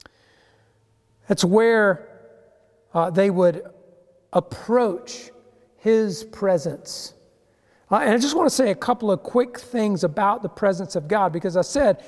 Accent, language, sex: American, English, male